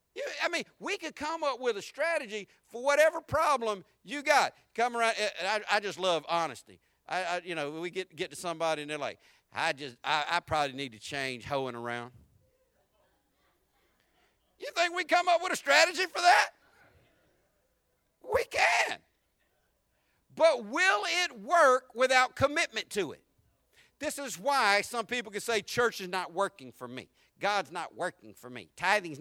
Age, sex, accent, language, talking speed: 50-69, male, American, English, 170 wpm